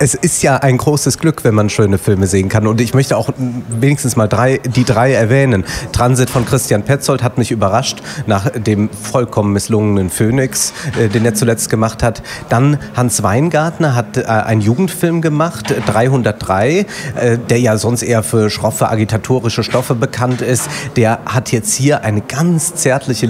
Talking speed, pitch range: 175 wpm, 115-140 Hz